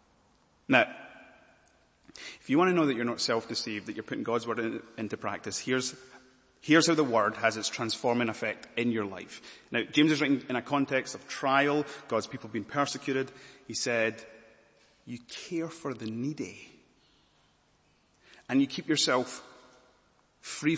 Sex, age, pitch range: male, 30-49, 115-140 Hz